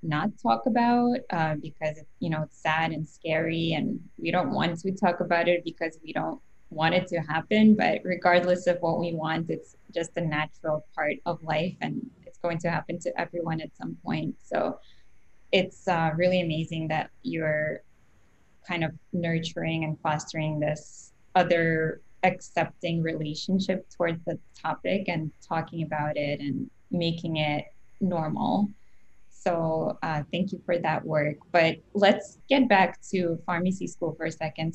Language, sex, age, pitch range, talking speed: English, female, 10-29, 160-180 Hz, 160 wpm